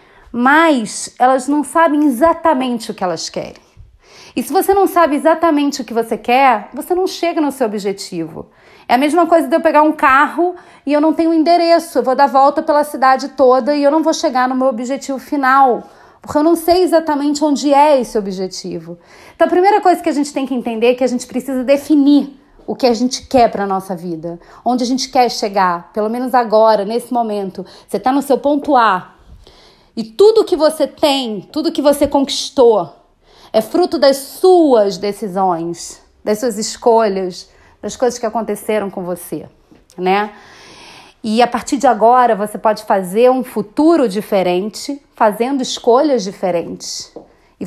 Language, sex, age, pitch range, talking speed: Portuguese, female, 30-49, 210-295 Hz, 180 wpm